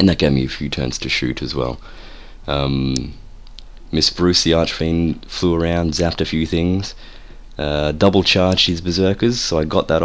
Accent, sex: Australian, male